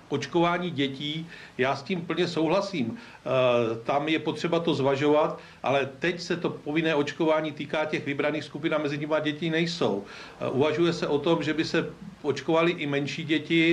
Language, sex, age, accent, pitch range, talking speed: Czech, male, 40-59, native, 145-165 Hz, 165 wpm